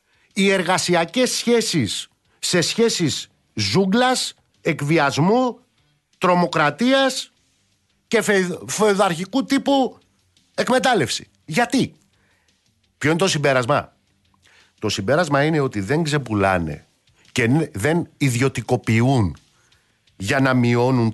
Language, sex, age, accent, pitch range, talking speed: Greek, male, 50-69, native, 120-165 Hz, 80 wpm